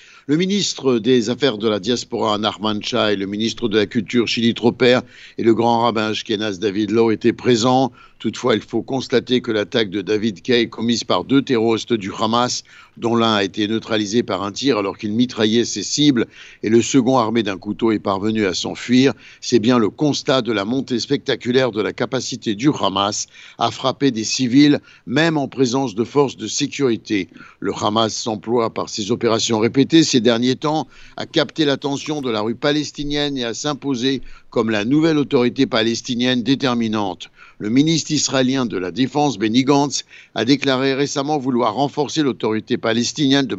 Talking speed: 175 wpm